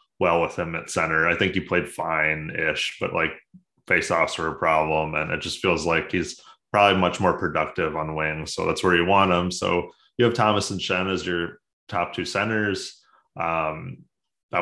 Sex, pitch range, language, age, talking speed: male, 85-105 Hz, English, 20-39, 195 wpm